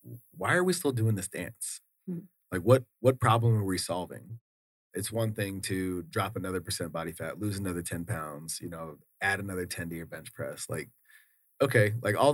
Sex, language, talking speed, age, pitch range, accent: male, English, 195 wpm, 30-49, 95-115 Hz, American